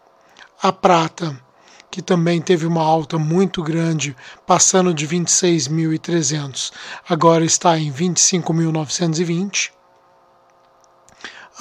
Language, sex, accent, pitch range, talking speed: Portuguese, male, Brazilian, 160-180 Hz, 85 wpm